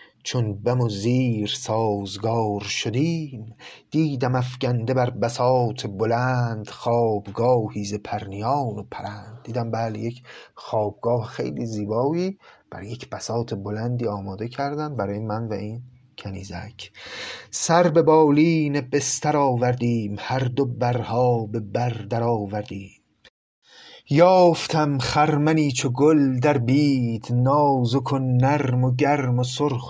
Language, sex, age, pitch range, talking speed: Persian, male, 30-49, 105-130 Hz, 115 wpm